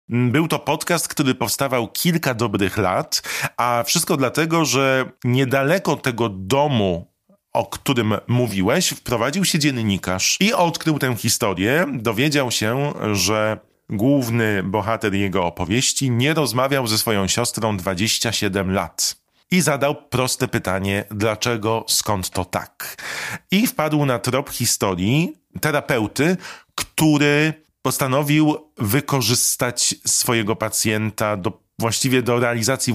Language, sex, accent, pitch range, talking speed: Polish, male, native, 105-140 Hz, 115 wpm